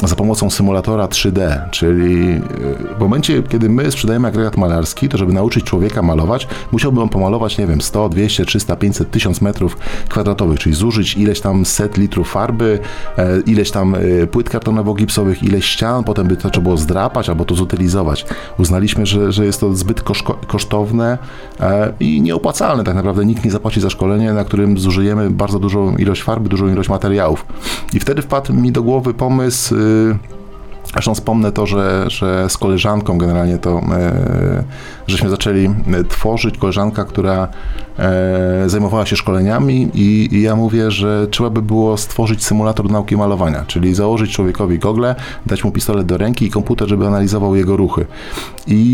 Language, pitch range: Polish, 95-115 Hz